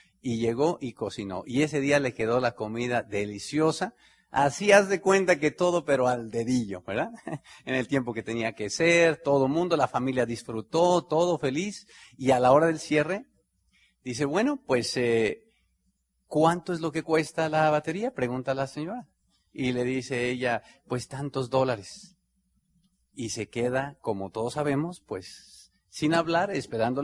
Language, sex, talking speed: Spanish, male, 160 wpm